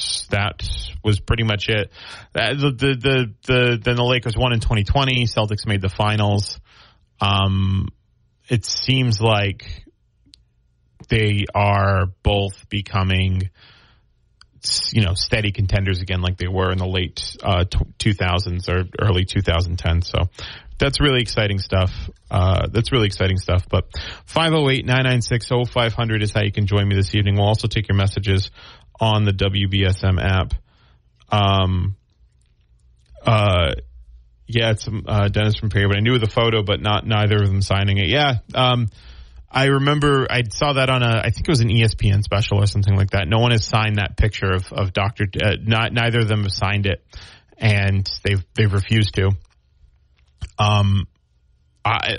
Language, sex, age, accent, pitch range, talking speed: English, male, 30-49, American, 95-110 Hz, 155 wpm